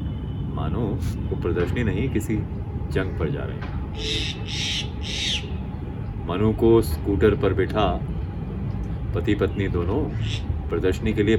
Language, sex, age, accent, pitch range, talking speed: Hindi, male, 30-49, native, 85-110 Hz, 85 wpm